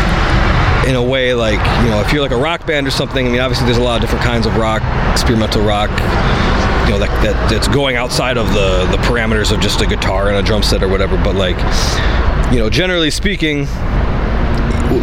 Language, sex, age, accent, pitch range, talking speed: English, male, 30-49, American, 95-130 Hz, 225 wpm